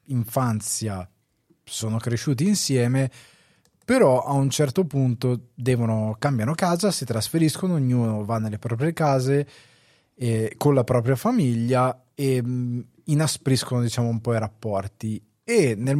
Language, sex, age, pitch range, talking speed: Italian, male, 20-39, 115-135 Hz, 130 wpm